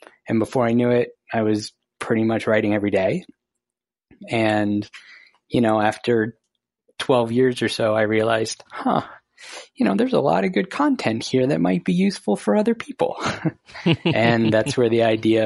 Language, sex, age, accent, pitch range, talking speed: English, male, 20-39, American, 110-130 Hz, 170 wpm